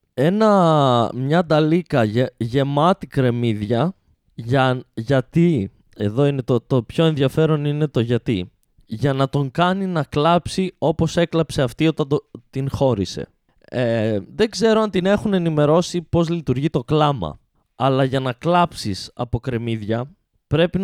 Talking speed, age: 140 wpm, 20-39